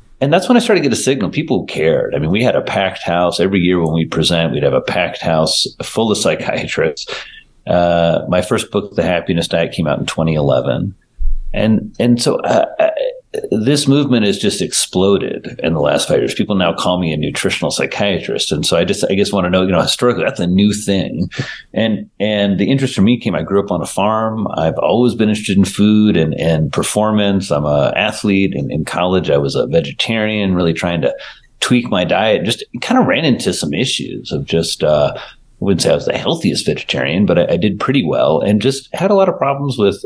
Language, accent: English, American